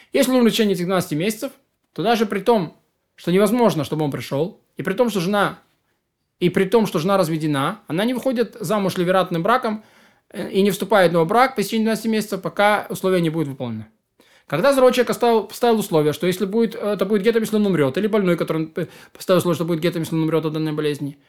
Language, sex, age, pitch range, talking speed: Russian, male, 20-39, 175-235 Hz, 205 wpm